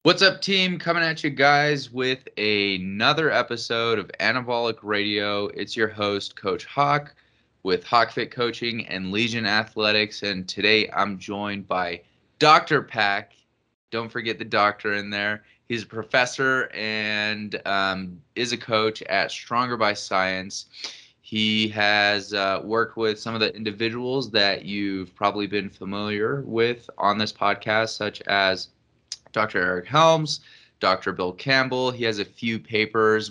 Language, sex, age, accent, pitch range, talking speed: English, male, 20-39, American, 100-120 Hz, 145 wpm